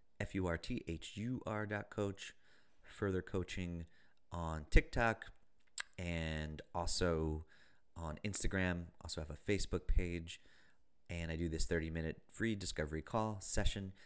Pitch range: 85-115 Hz